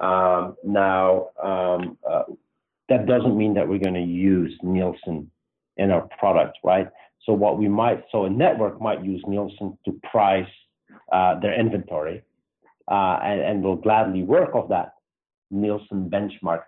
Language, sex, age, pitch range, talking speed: English, male, 50-69, 90-105 Hz, 150 wpm